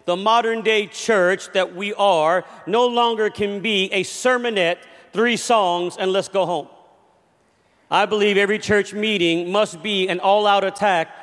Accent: American